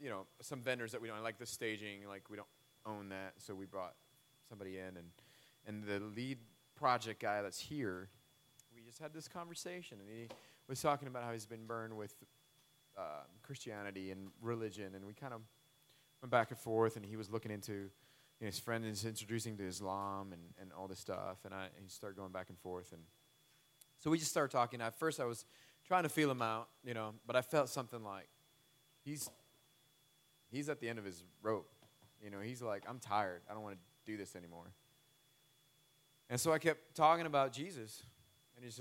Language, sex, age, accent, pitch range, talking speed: English, male, 30-49, American, 105-145 Hz, 210 wpm